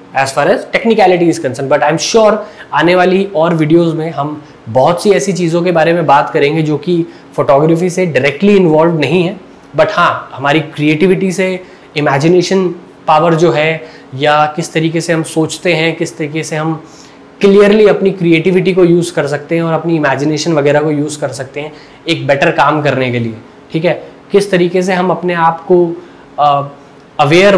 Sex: male